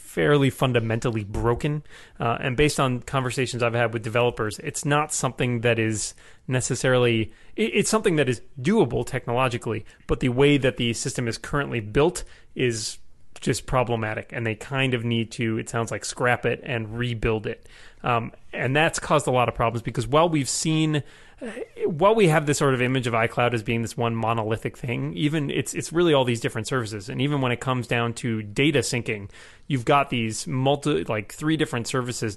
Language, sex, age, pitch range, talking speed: English, male, 30-49, 115-140 Hz, 190 wpm